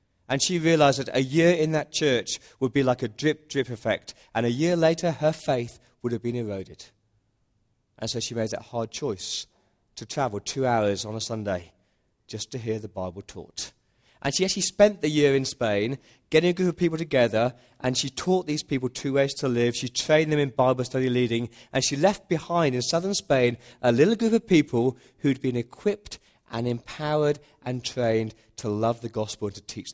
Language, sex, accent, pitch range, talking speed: English, male, British, 105-135 Hz, 205 wpm